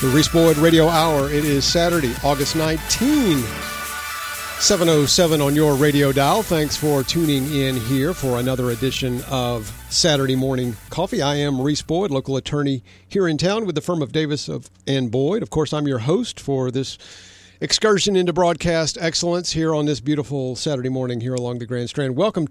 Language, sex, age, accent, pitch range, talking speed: English, male, 50-69, American, 130-170 Hz, 180 wpm